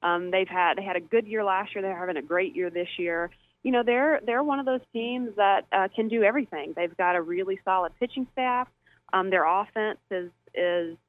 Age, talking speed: 30-49, 225 wpm